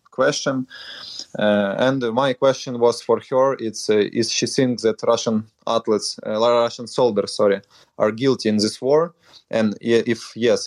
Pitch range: 110-130 Hz